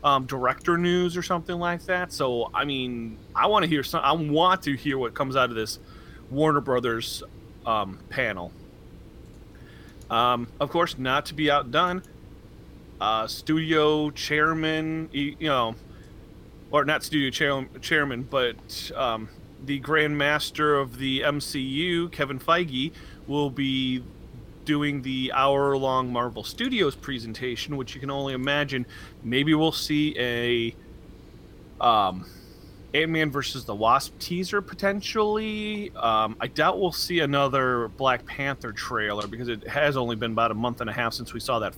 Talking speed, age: 150 wpm, 30-49